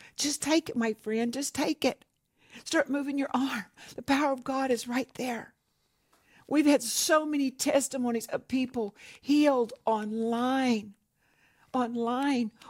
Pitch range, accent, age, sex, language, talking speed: 250-300 Hz, American, 60-79, female, English, 135 wpm